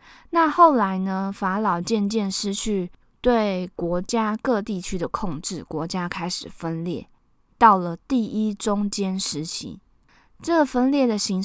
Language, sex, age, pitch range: Chinese, female, 20-39, 175-225 Hz